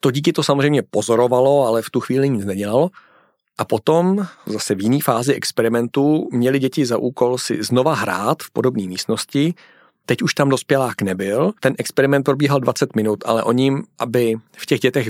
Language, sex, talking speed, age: Czech, male, 175 wpm, 40-59